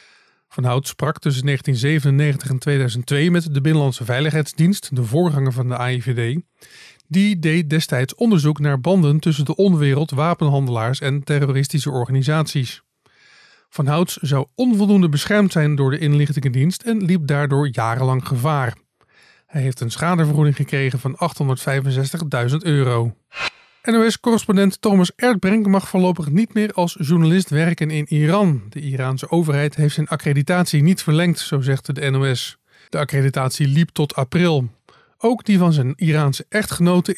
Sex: male